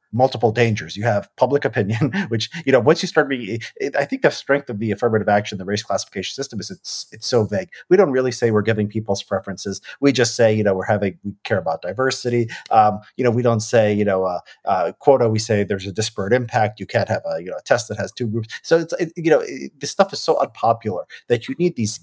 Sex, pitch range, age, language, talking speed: male, 105-120 Hz, 30-49, English, 250 wpm